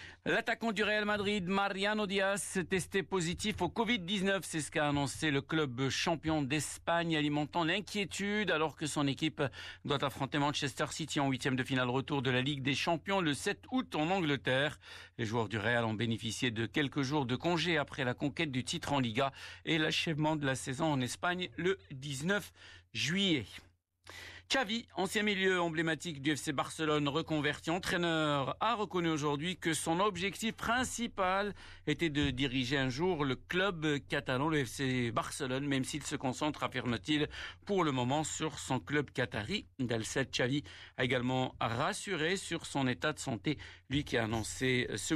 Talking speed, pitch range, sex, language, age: 165 wpm, 130-170 Hz, male, Arabic, 50-69